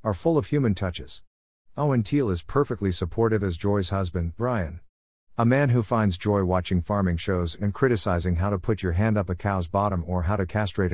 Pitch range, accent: 90-115 Hz, American